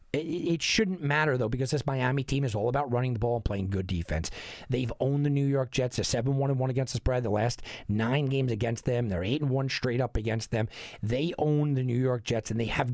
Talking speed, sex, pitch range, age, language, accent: 235 wpm, male, 120-175 Hz, 40-59, English, American